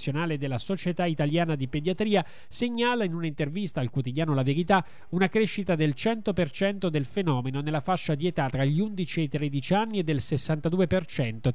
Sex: male